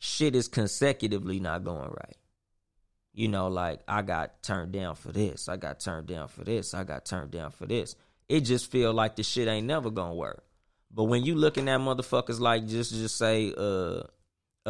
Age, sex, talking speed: 20-39, male, 195 wpm